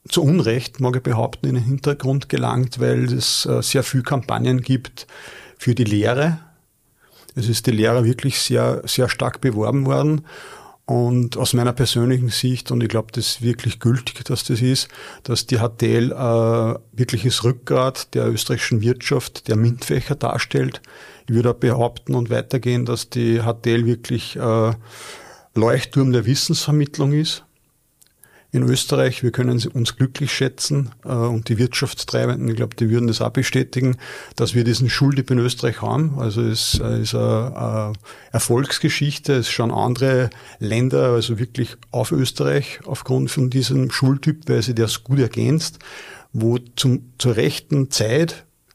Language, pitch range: German, 115-135 Hz